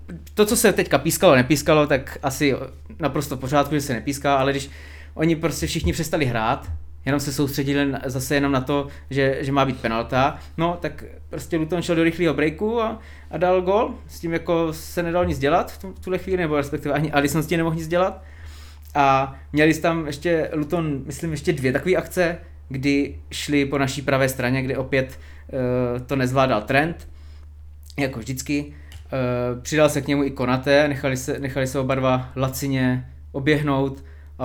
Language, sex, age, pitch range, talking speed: Czech, male, 20-39, 110-150 Hz, 180 wpm